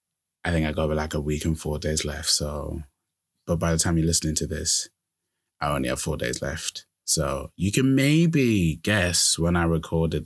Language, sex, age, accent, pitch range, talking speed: English, male, 20-39, British, 80-85 Hz, 200 wpm